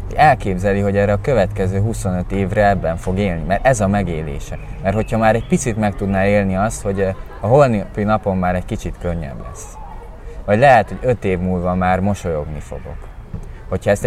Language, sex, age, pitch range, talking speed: Hungarian, male, 20-39, 85-105 Hz, 190 wpm